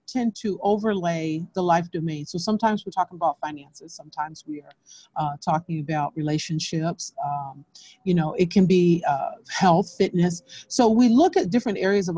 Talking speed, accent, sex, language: 170 wpm, American, female, English